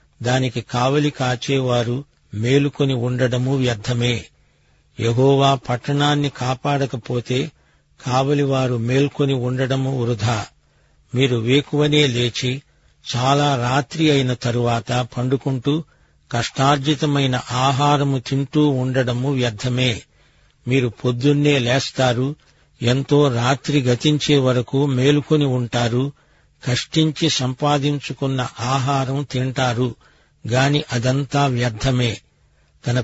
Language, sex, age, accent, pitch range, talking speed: Telugu, male, 50-69, native, 125-140 Hz, 75 wpm